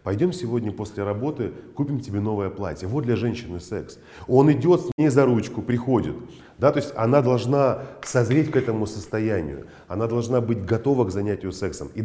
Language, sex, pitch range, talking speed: Russian, male, 105-130 Hz, 175 wpm